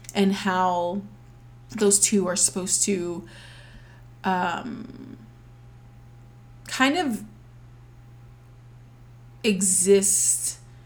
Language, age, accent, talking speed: English, 20-39, American, 60 wpm